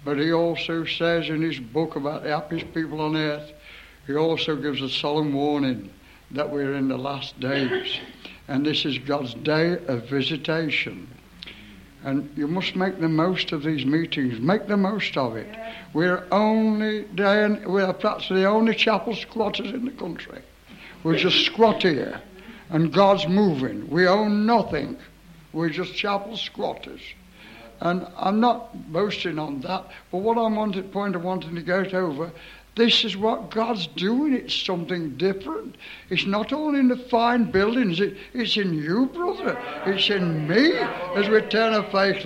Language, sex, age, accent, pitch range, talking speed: English, male, 60-79, American, 155-225 Hz, 170 wpm